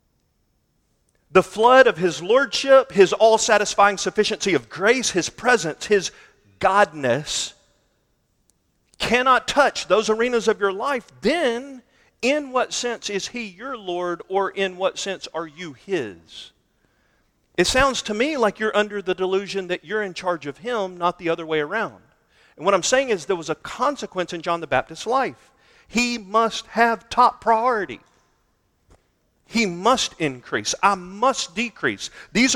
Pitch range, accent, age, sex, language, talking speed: 165-225 Hz, American, 40-59, male, English, 150 wpm